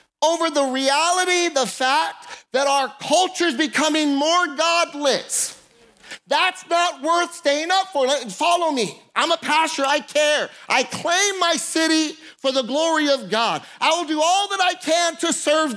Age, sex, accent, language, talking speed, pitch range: 40-59, male, American, English, 160 wpm, 245-340 Hz